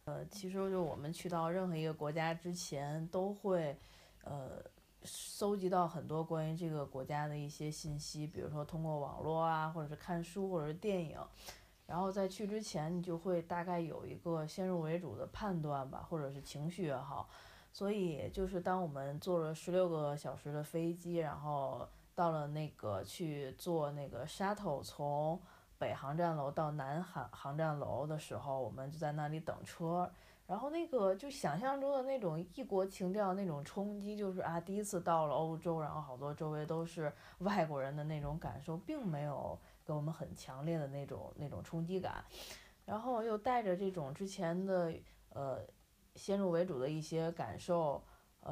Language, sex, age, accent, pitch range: Chinese, female, 20-39, native, 150-180 Hz